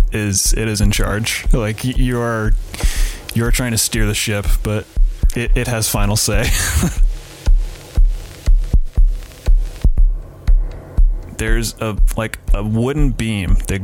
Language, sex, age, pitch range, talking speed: English, male, 20-39, 95-115 Hz, 115 wpm